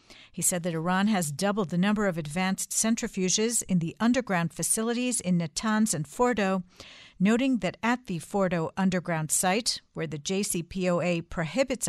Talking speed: 150 wpm